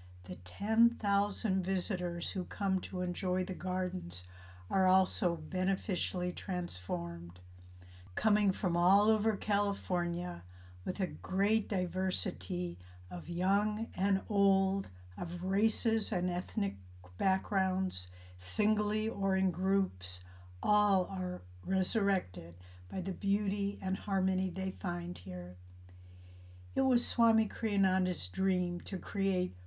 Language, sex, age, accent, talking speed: English, female, 60-79, American, 105 wpm